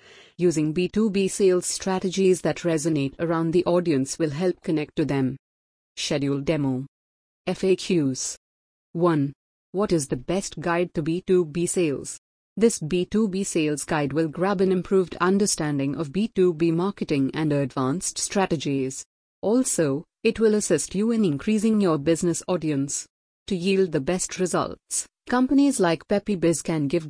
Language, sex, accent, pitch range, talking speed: English, female, Indian, 150-195 Hz, 135 wpm